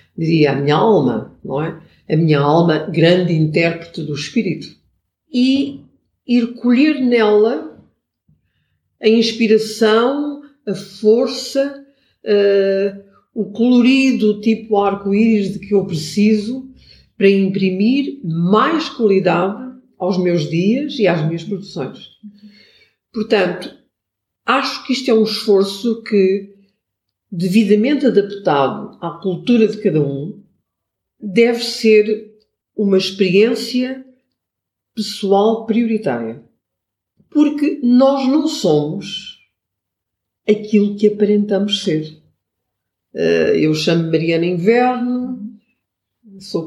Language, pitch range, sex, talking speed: Portuguese, 185-230 Hz, female, 95 wpm